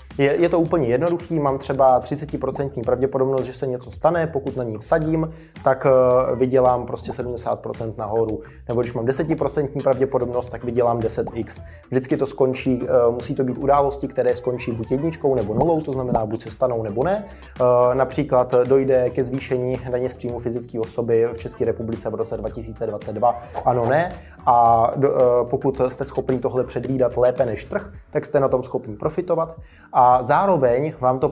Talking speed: 165 wpm